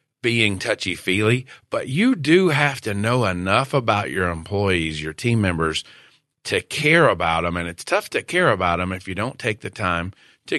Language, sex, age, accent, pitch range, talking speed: English, male, 40-59, American, 95-145 Hz, 185 wpm